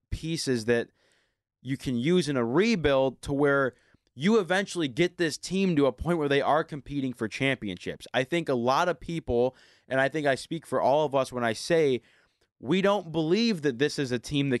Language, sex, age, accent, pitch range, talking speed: English, male, 20-39, American, 125-165 Hz, 210 wpm